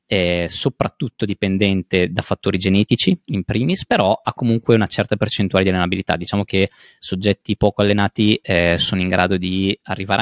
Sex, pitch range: male, 95-115 Hz